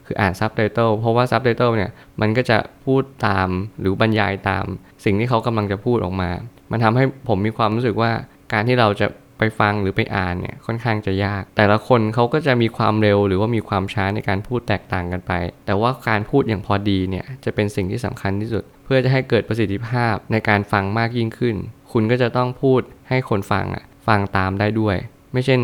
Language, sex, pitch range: Thai, male, 100-120 Hz